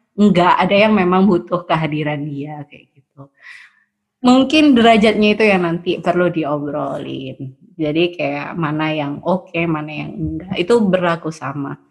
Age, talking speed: 20-39, 140 wpm